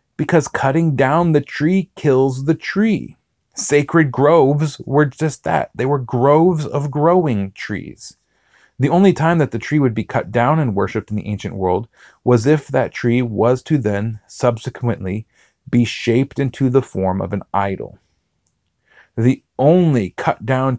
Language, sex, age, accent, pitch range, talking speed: English, male, 30-49, American, 105-135 Hz, 155 wpm